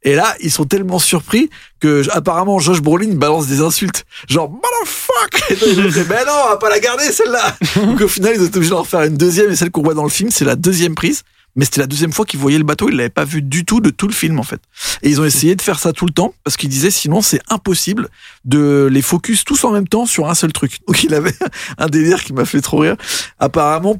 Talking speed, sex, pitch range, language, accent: 265 wpm, male, 150-200 Hz, French, French